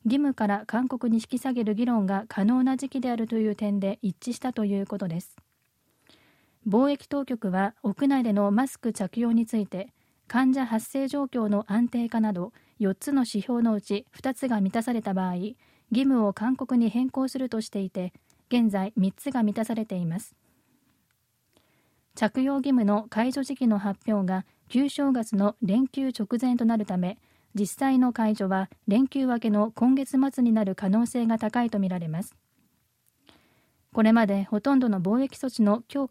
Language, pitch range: Japanese, 205-255 Hz